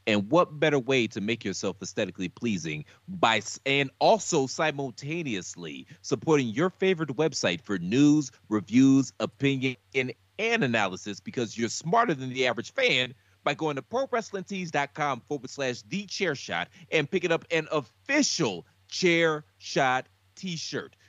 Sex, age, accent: male, 30-49, American